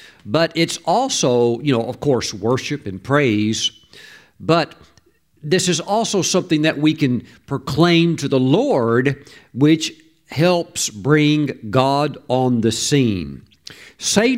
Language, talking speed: English, 125 wpm